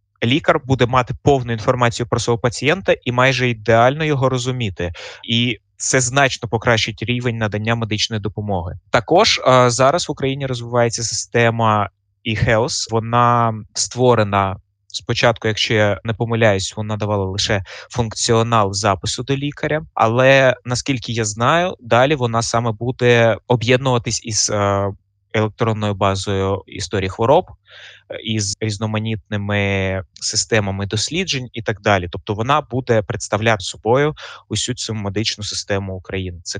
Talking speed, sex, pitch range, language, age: 120 wpm, male, 100-125 Hz, Ukrainian, 20-39